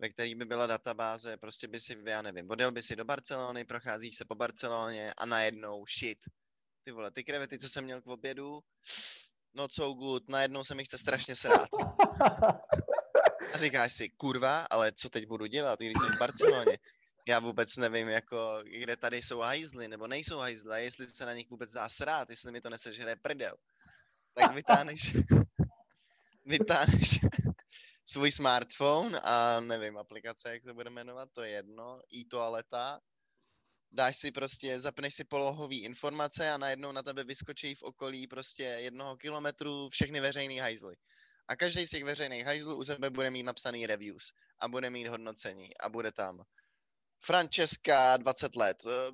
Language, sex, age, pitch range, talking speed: Czech, male, 20-39, 115-140 Hz, 165 wpm